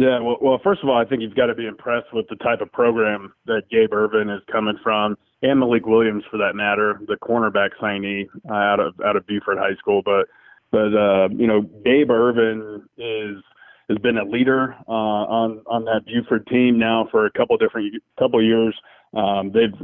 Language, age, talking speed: English, 30-49, 205 wpm